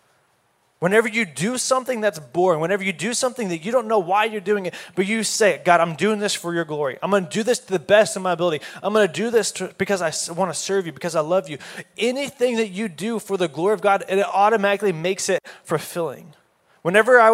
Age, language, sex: 20-39, English, male